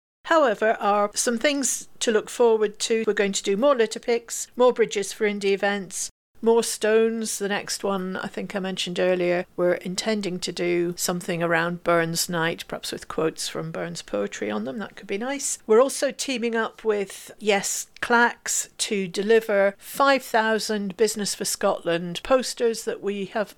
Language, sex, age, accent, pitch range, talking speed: English, female, 50-69, British, 180-225 Hz, 170 wpm